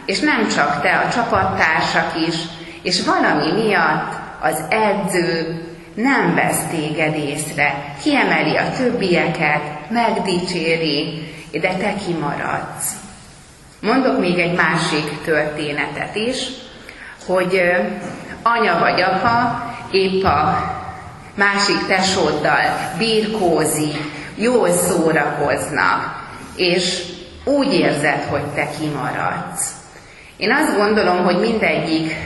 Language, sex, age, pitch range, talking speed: Hungarian, female, 30-49, 160-200 Hz, 95 wpm